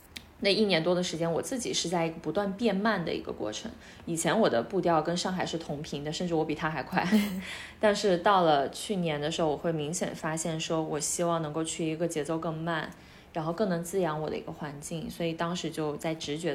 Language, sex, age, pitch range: Chinese, female, 20-39, 155-185 Hz